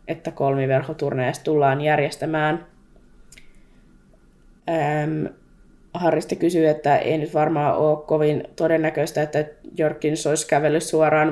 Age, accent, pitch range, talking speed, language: 20-39, native, 145-160 Hz, 95 wpm, Finnish